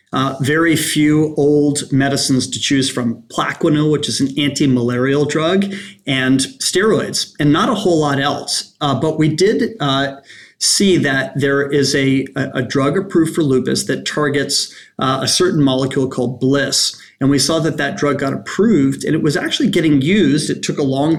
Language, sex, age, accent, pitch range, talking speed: English, male, 40-59, American, 135-160 Hz, 180 wpm